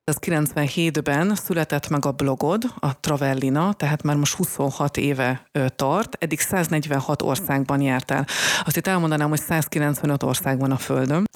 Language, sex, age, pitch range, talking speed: Hungarian, female, 30-49, 140-165 Hz, 130 wpm